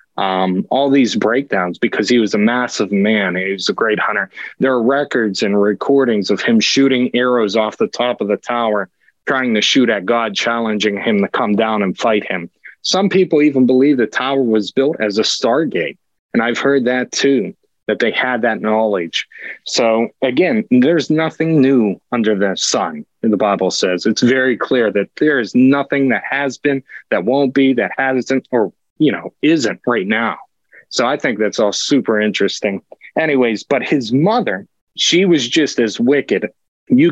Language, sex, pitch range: English, male, 110-135 Hz